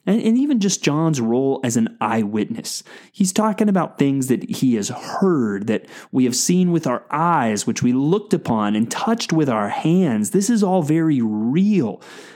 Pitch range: 130-195 Hz